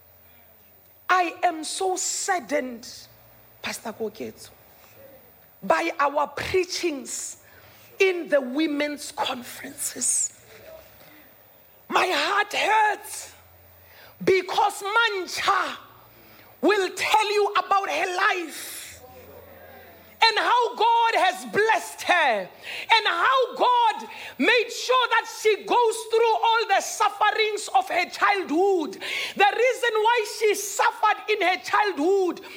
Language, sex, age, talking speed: English, female, 40-59, 100 wpm